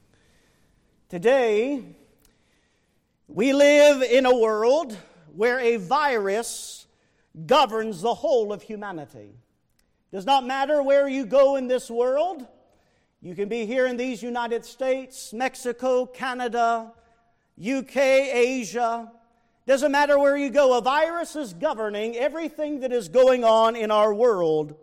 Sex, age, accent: male, 50-69, American